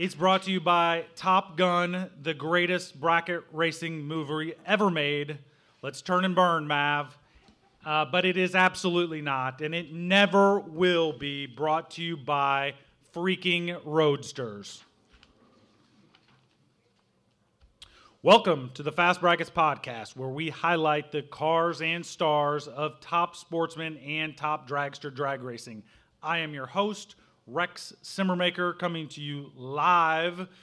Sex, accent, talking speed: male, American, 130 wpm